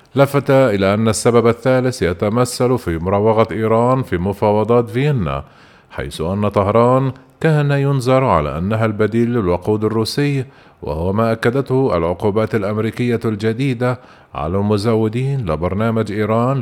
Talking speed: 115 wpm